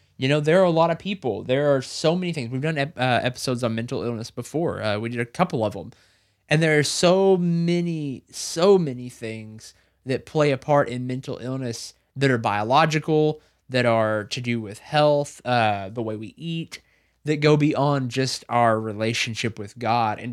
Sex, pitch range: male, 120-170 Hz